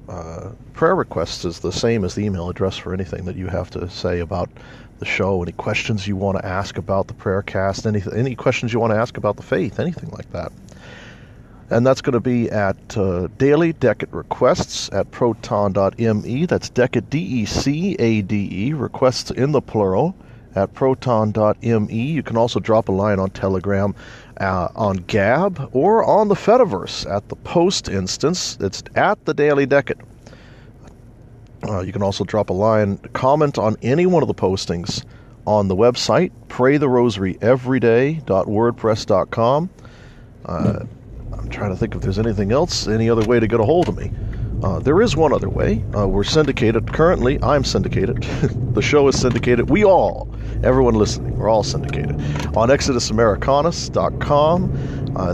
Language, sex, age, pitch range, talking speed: English, male, 40-59, 100-130 Hz, 160 wpm